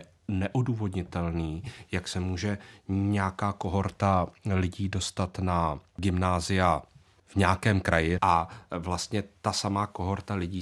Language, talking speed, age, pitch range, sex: Czech, 105 wpm, 30-49, 90-100 Hz, male